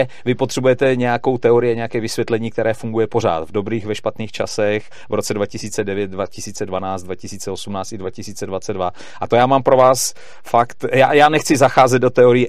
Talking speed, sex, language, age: 165 wpm, male, Czech, 40-59